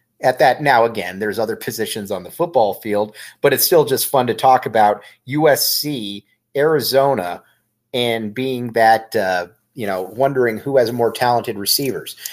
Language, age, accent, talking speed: English, 30-49, American, 160 wpm